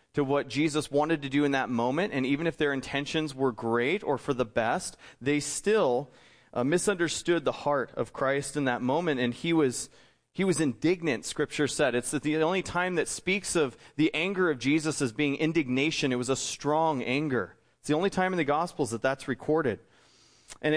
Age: 30-49